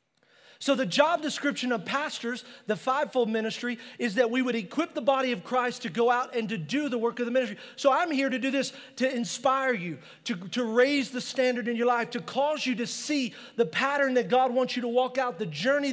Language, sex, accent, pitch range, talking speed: English, male, American, 225-275 Hz, 235 wpm